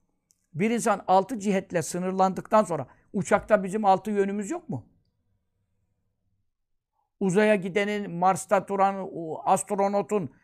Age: 60-79